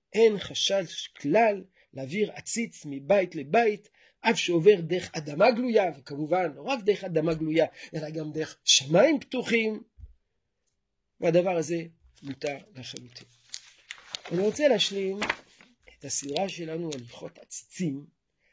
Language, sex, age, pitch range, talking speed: Hebrew, male, 50-69, 155-210 Hz, 115 wpm